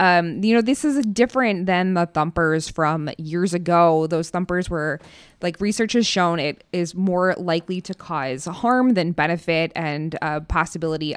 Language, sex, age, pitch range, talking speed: English, female, 20-39, 155-180 Hz, 165 wpm